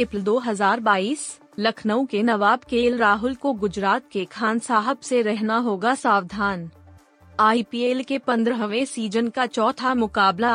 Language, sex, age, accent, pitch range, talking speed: Hindi, female, 20-39, native, 205-250 Hz, 130 wpm